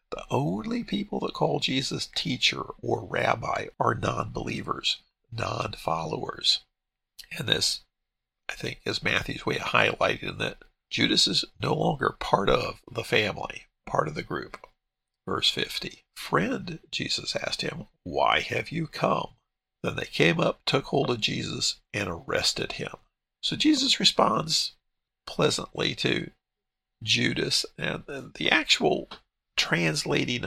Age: 50-69